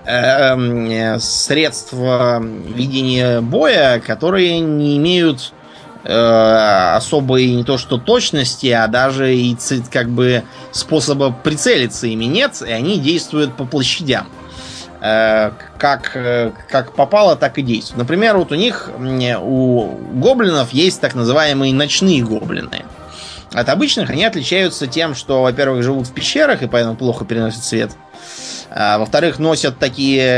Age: 20-39